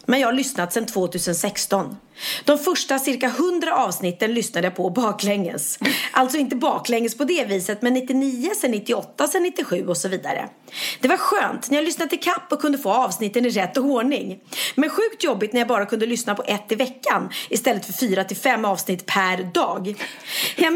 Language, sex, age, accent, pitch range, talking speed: Swedish, female, 30-49, native, 200-275 Hz, 190 wpm